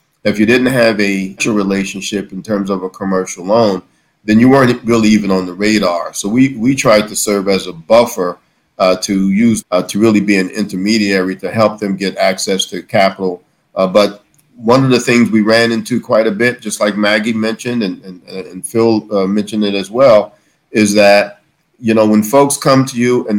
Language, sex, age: English, male, 50-69